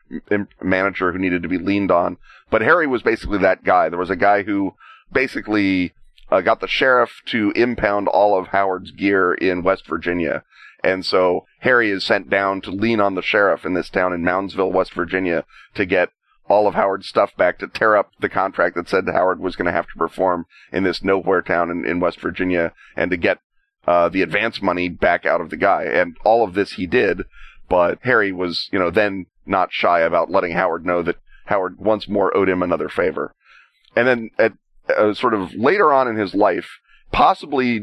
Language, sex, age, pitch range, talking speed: English, male, 30-49, 90-100 Hz, 205 wpm